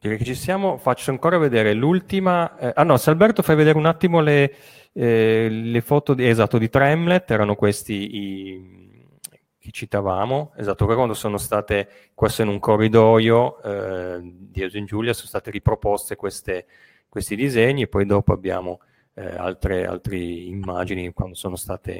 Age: 30-49